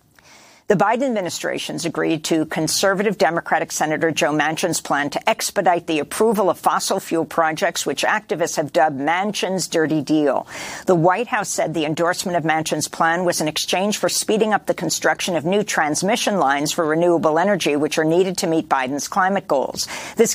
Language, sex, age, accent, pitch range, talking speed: English, female, 50-69, American, 155-200 Hz, 175 wpm